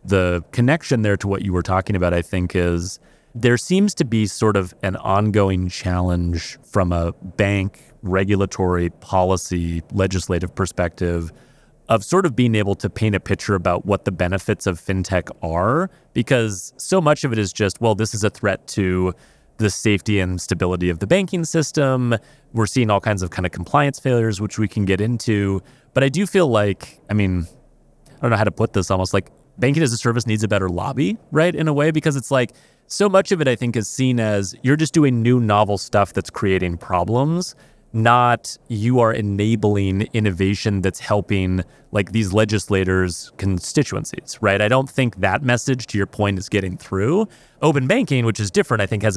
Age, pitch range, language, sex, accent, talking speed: 30-49, 95-125 Hz, English, male, American, 195 wpm